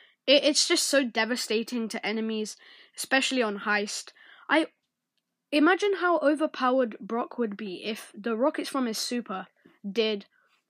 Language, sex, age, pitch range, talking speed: English, female, 10-29, 220-275 Hz, 130 wpm